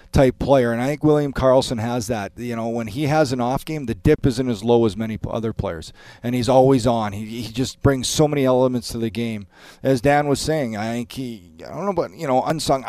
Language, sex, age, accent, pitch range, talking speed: English, male, 40-59, American, 115-140 Hz, 250 wpm